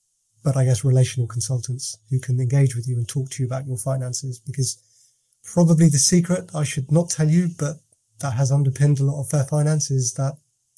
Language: English